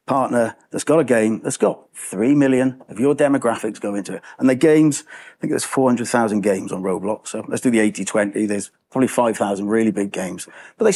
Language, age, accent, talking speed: English, 40-59, British, 210 wpm